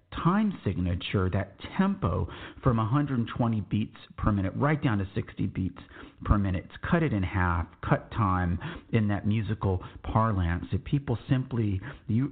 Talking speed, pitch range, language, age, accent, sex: 150 wpm, 100-130 Hz, English, 50-69, American, male